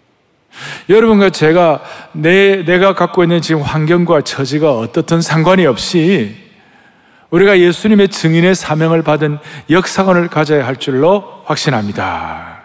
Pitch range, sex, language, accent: 145-200 Hz, male, Korean, native